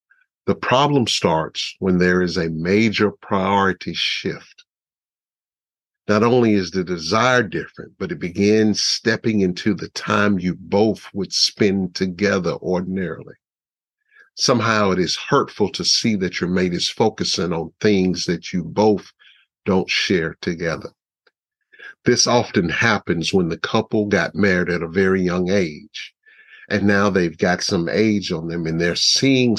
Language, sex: English, male